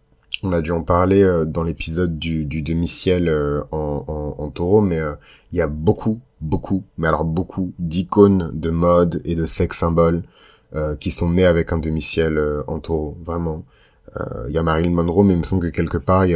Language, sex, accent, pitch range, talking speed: French, male, French, 80-90 Hz, 195 wpm